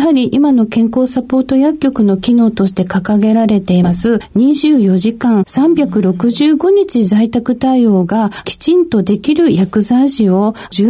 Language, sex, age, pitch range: Japanese, female, 50-69, 205-290 Hz